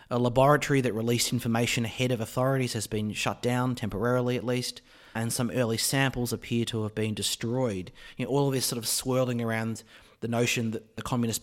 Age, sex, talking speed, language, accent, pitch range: 30-49, male, 190 wpm, English, Australian, 110-135 Hz